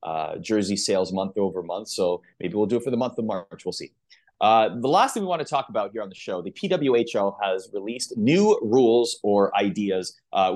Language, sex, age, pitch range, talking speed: English, male, 30-49, 105-155 Hz, 225 wpm